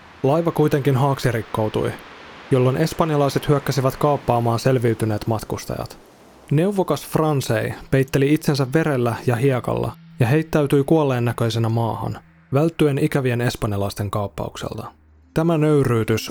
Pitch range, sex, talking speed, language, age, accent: 115-145 Hz, male, 100 wpm, Finnish, 20-39, native